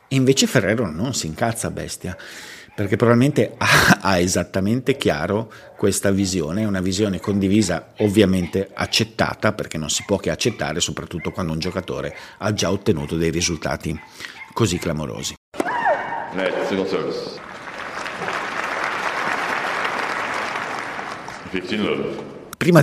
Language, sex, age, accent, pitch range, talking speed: Italian, male, 50-69, native, 85-115 Hz, 105 wpm